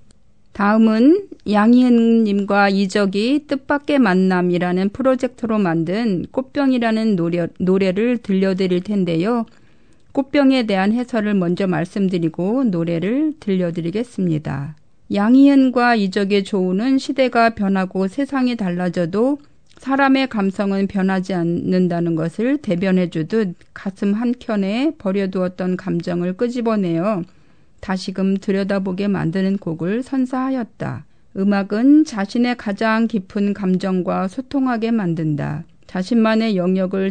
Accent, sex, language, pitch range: native, female, Korean, 185-235 Hz